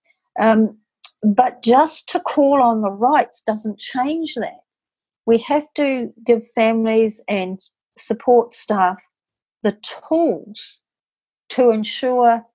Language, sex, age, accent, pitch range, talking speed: English, female, 60-79, Australian, 185-230 Hz, 110 wpm